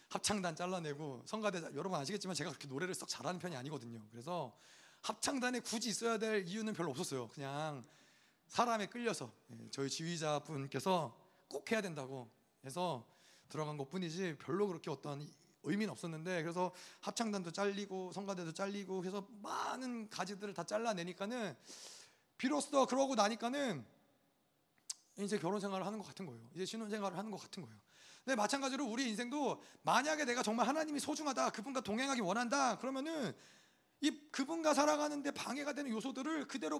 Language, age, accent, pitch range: Korean, 30-49, native, 180-255 Hz